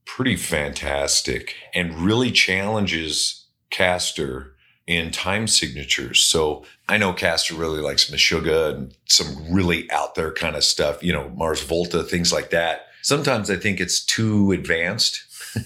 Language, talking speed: English, 140 wpm